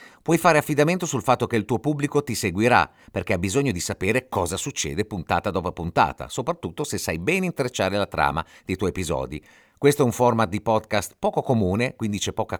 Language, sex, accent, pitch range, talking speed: Italian, male, native, 95-140 Hz, 200 wpm